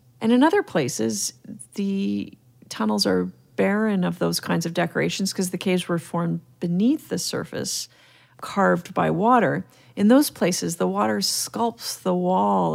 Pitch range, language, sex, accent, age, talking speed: 165-200 Hz, English, female, American, 40-59, 150 wpm